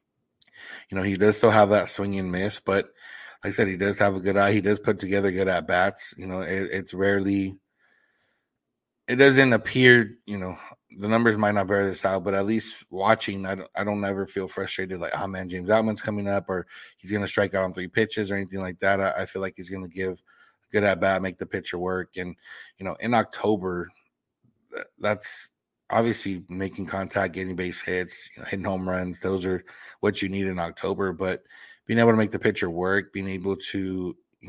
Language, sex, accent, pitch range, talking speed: English, male, American, 95-105 Hz, 215 wpm